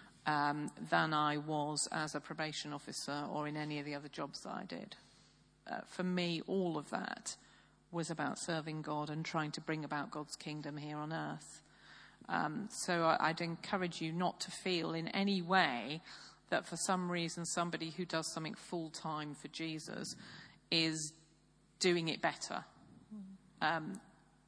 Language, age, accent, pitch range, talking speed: English, 40-59, British, 155-185 Hz, 160 wpm